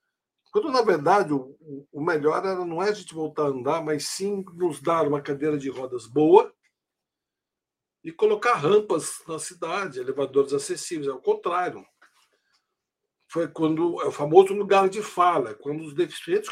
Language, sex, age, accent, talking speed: Portuguese, male, 60-79, Brazilian, 155 wpm